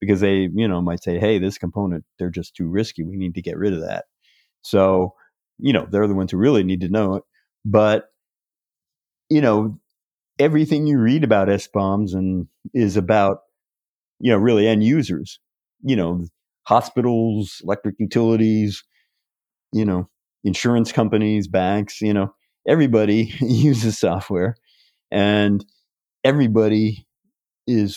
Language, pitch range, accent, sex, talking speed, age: English, 95-110 Hz, American, male, 140 wpm, 50-69